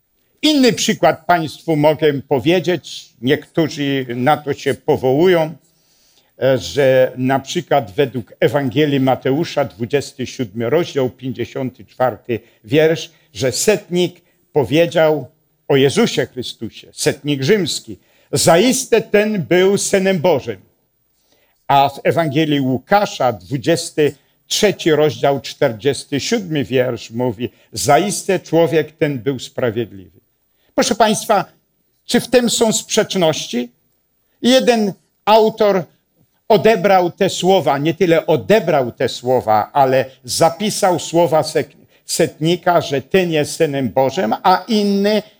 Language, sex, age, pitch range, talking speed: Polish, male, 60-79, 130-185 Hz, 100 wpm